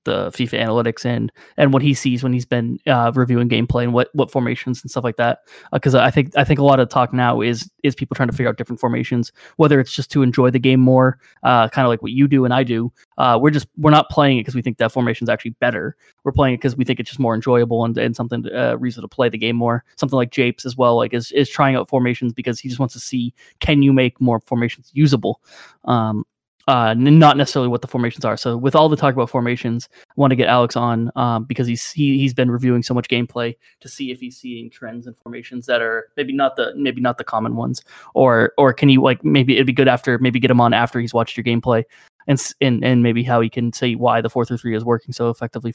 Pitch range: 120-135 Hz